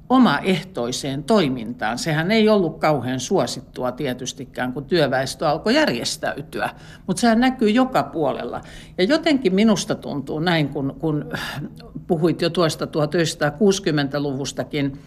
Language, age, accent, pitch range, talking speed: Finnish, 60-79, native, 145-220 Hz, 115 wpm